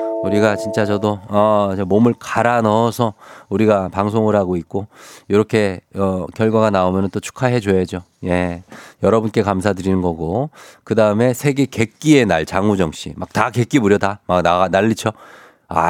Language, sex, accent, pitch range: Korean, male, native, 100-135 Hz